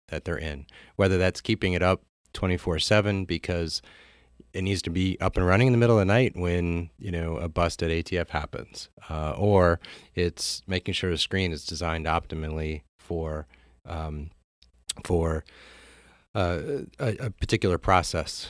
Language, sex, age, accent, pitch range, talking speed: English, male, 30-49, American, 80-95 Hz, 165 wpm